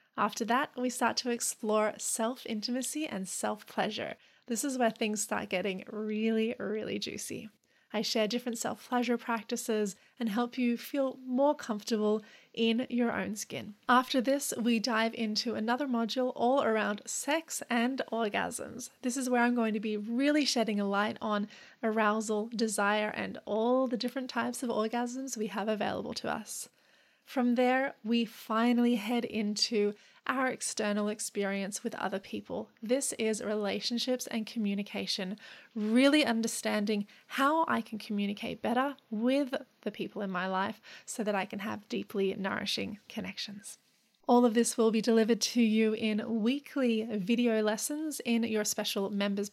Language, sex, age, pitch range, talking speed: English, female, 30-49, 215-245 Hz, 150 wpm